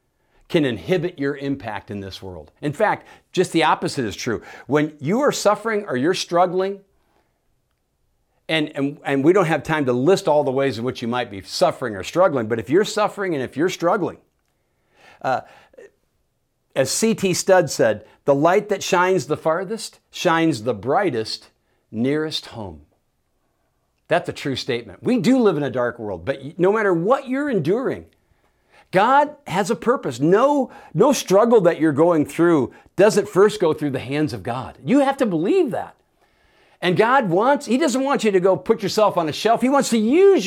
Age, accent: 50-69, American